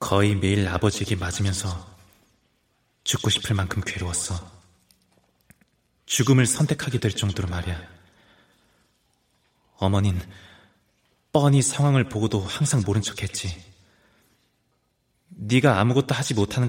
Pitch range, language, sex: 95-110 Hz, Korean, male